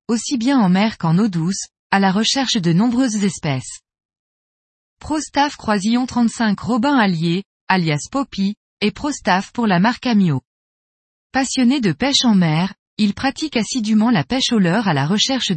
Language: French